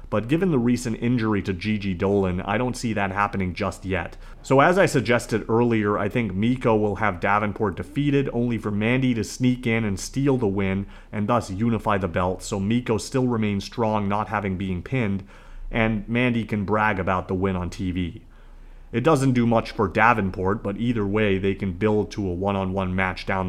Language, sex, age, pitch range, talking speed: English, male, 30-49, 100-120 Hz, 195 wpm